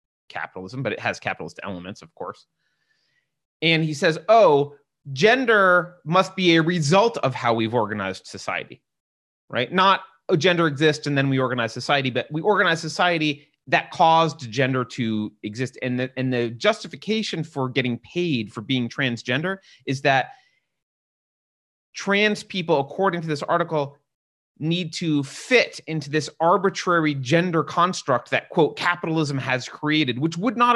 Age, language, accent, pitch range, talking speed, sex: 30-49, English, American, 125-170 Hz, 145 wpm, male